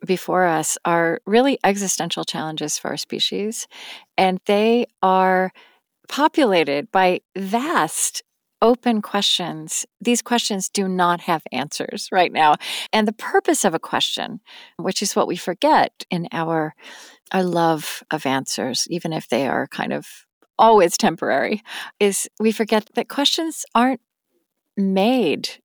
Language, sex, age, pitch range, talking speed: English, female, 40-59, 165-220 Hz, 135 wpm